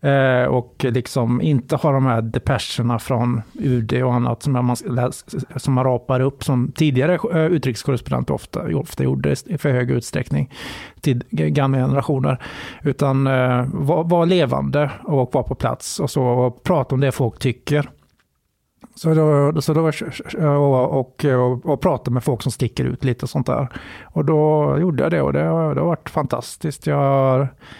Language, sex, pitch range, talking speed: Swedish, male, 125-155 Hz, 150 wpm